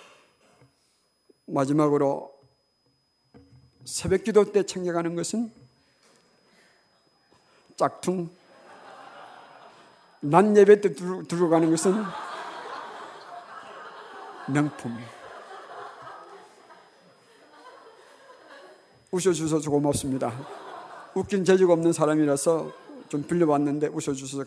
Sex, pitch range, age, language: male, 140-185 Hz, 50-69, Korean